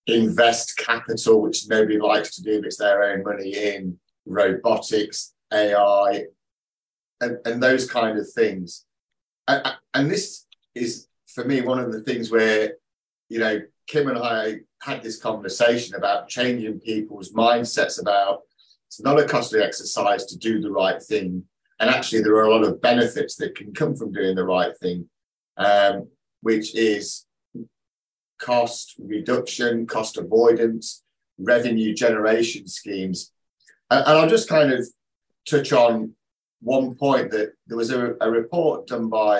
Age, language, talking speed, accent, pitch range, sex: 30-49, English, 150 wpm, British, 105-120 Hz, male